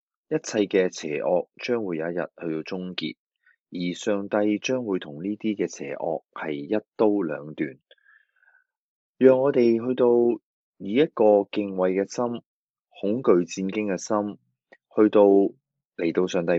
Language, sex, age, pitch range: Chinese, male, 20-39, 85-115 Hz